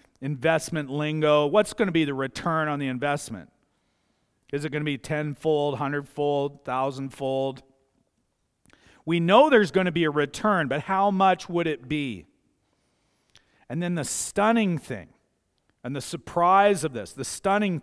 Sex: male